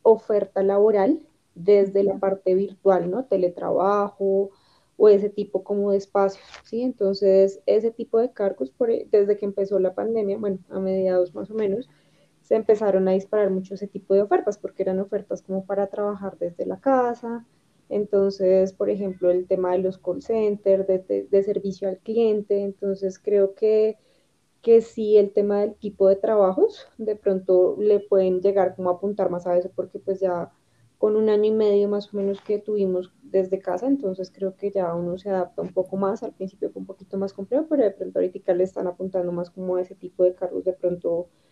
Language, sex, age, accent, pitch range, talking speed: Spanish, female, 10-29, Colombian, 185-205 Hz, 195 wpm